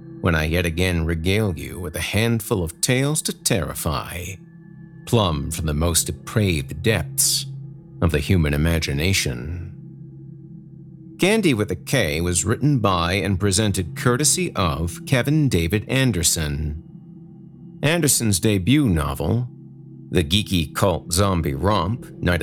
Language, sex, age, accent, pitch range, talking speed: English, male, 50-69, American, 85-140 Hz, 125 wpm